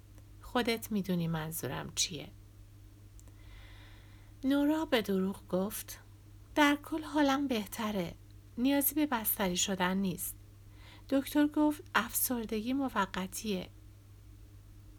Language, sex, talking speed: Persian, female, 85 wpm